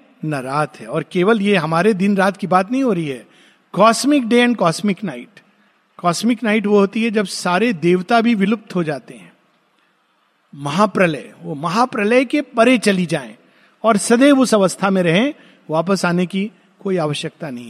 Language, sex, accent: Hindi, male, native